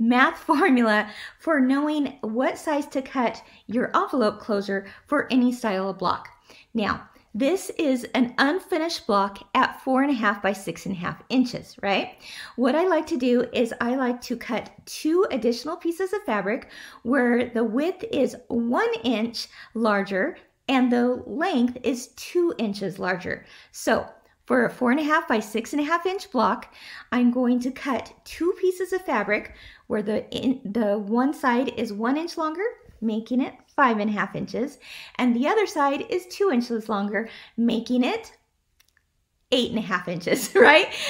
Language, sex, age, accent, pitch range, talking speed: English, female, 40-59, American, 225-310 Hz, 170 wpm